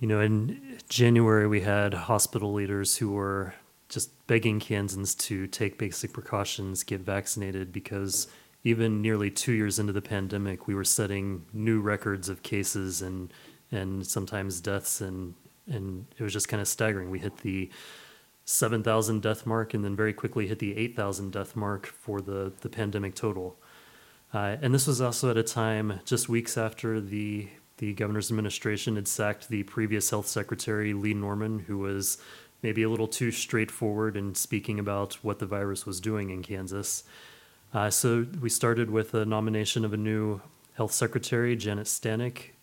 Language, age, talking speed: English, 30-49, 170 wpm